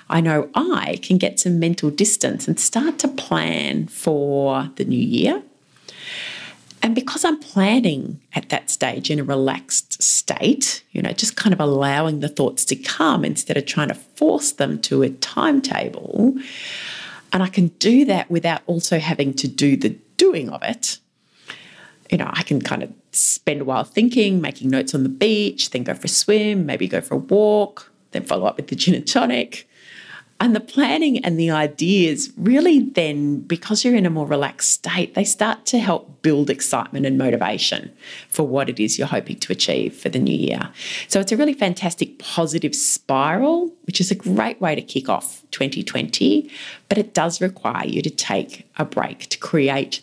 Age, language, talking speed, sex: 30-49, English, 185 wpm, female